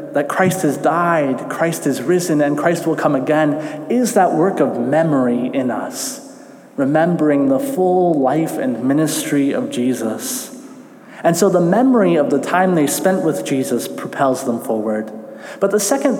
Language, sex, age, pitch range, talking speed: English, male, 30-49, 140-190 Hz, 165 wpm